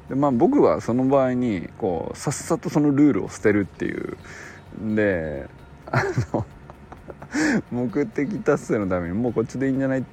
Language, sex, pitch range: Japanese, male, 95-150 Hz